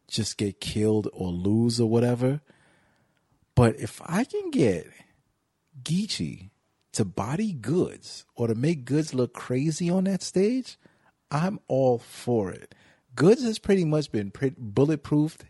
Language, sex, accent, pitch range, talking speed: English, male, American, 105-140 Hz, 135 wpm